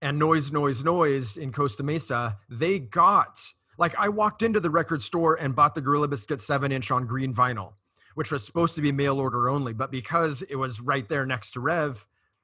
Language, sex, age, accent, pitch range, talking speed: English, male, 30-49, American, 130-160 Hz, 205 wpm